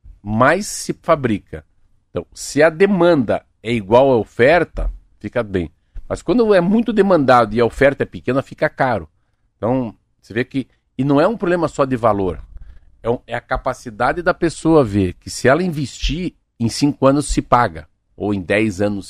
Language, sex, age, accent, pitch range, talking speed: Portuguese, male, 50-69, Brazilian, 95-145 Hz, 175 wpm